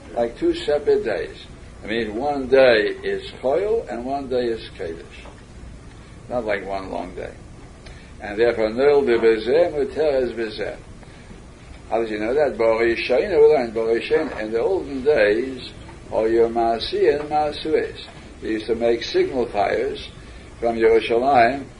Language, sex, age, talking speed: English, male, 60-79, 150 wpm